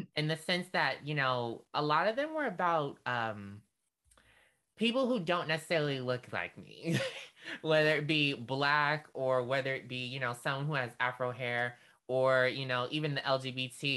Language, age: English, 20-39